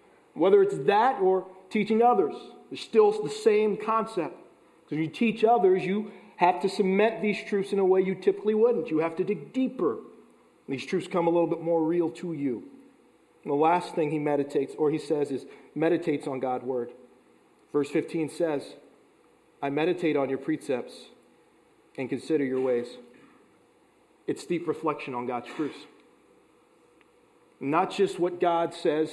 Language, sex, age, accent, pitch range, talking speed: English, male, 40-59, American, 155-240 Hz, 165 wpm